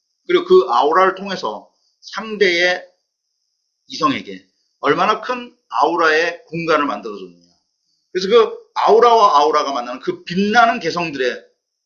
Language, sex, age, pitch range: Korean, male, 30-49, 145-245 Hz